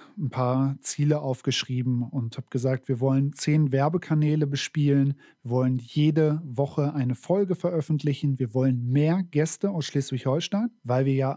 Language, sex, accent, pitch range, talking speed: German, male, German, 135-170 Hz, 145 wpm